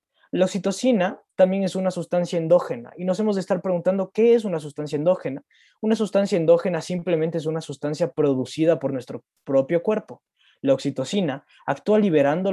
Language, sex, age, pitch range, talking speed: Spanish, male, 20-39, 140-180 Hz, 165 wpm